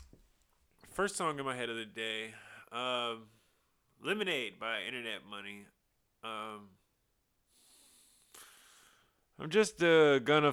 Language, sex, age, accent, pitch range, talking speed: English, male, 20-39, American, 115-145 Hz, 105 wpm